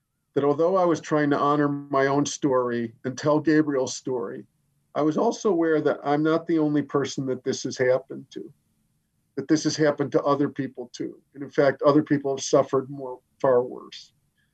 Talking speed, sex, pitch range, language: 195 wpm, male, 135-160 Hz, English